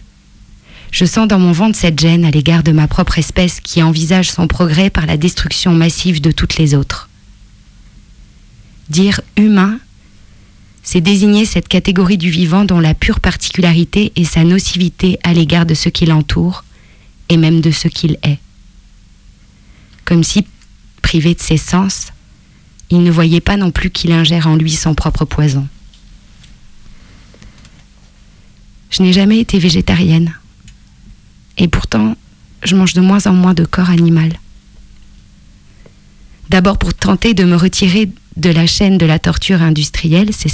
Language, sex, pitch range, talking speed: French, female, 155-185 Hz, 150 wpm